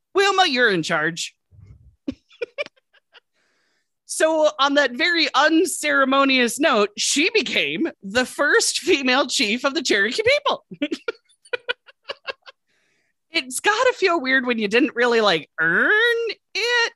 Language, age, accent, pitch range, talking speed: English, 30-49, American, 220-365 Hz, 110 wpm